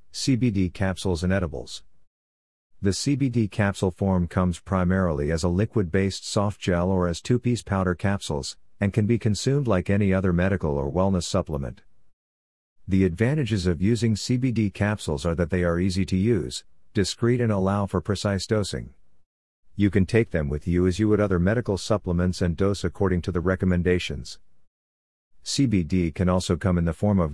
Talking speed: 170 wpm